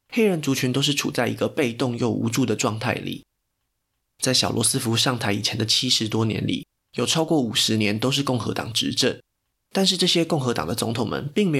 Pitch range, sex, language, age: 115-140 Hz, male, Chinese, 20-39